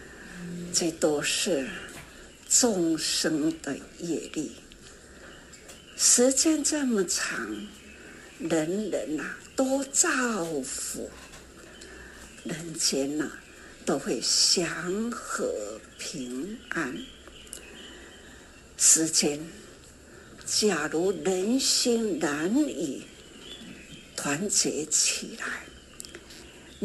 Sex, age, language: female, 60-79, Chinese